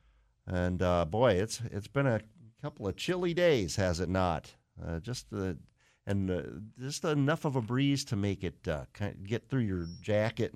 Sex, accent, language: male, American, English